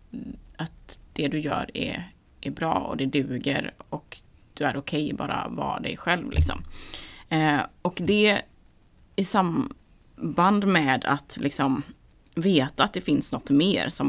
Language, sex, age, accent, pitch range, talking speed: Swedish, female, 20-39, native, 135-185 Hz, 150 wpm